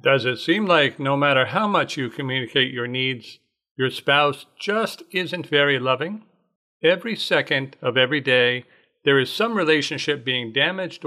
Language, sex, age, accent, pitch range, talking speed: English, male, 50-69, American, 130-165 Hz, 155 wpm